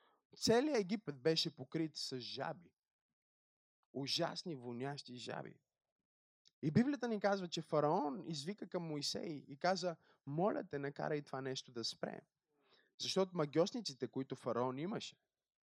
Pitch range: 125-170 Hz